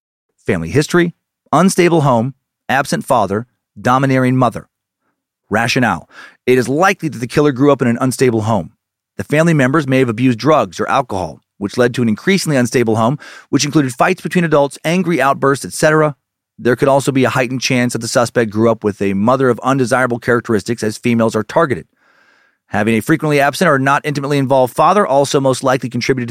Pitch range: 115-145 Hz